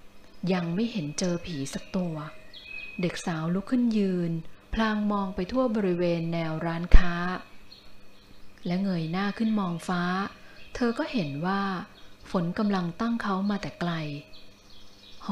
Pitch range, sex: 155-205 Hz, female